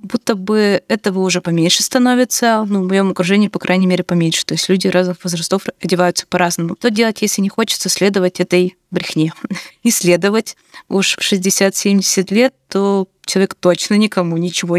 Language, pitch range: Russian, 185-215 Hz